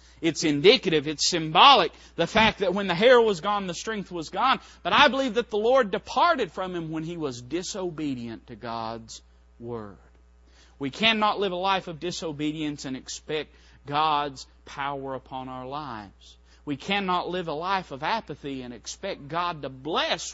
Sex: male